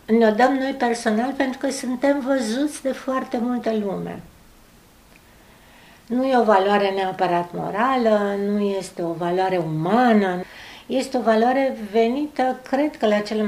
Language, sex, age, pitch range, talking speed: Romanian, female, 60-79, 195-255 Hz, 140 wpm